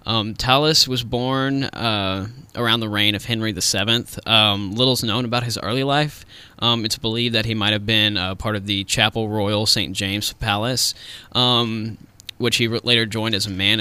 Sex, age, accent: male, 10-29, American